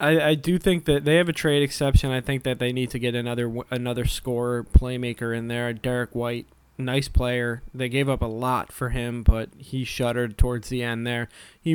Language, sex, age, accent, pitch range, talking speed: English, male, 20-39, American, 115-135 Hz, 210 wpm